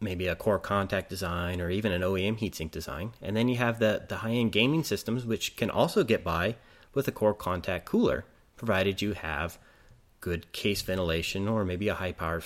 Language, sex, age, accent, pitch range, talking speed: English, male, 30-49, American, 90-110 Hz, 195 wpm